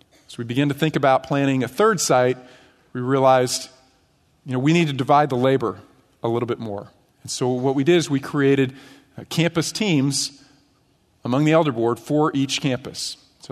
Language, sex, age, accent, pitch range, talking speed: English, male, 40-59, American, 120-150 Hz, 185 wpm